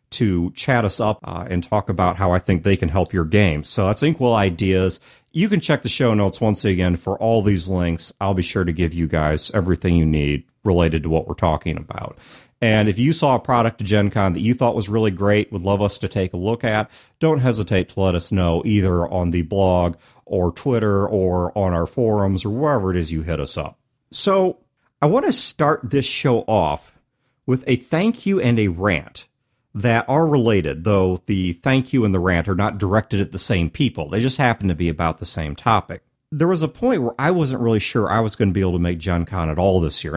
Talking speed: 240 wpm